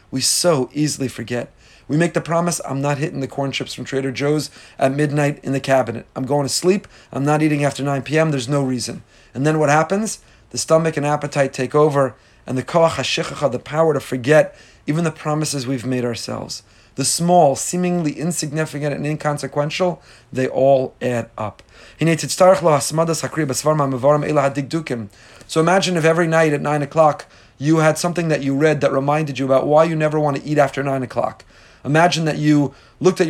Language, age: English, 30-49